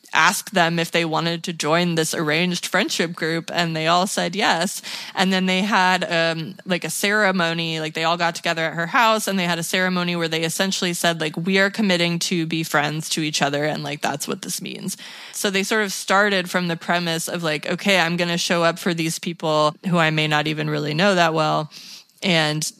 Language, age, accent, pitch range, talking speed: English, 20-39, American, 165-195 Hz, 225 wpm